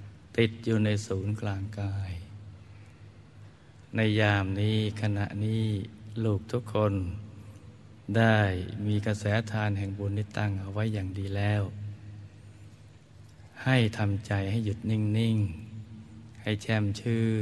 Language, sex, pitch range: Thai, male, 100-110 Hz